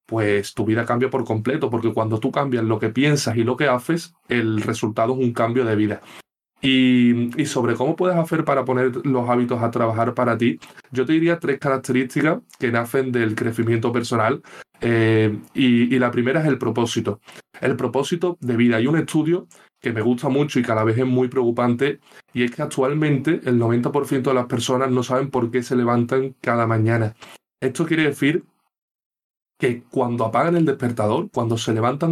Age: 20-39